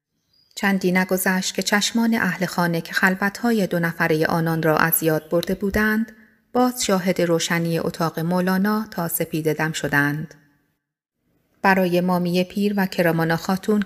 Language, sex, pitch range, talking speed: Persian, female, 165-205 Hz, 130 wpm